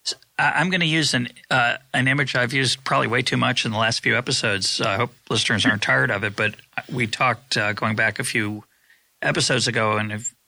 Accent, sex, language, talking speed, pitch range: American, male, English, 225 wpm, 110-130 Hz